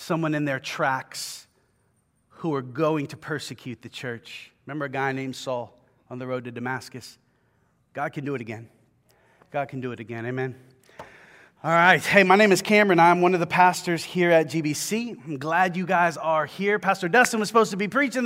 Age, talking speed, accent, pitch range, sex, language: 30-49, 195 wpm, American, 140-190 Hz, male, English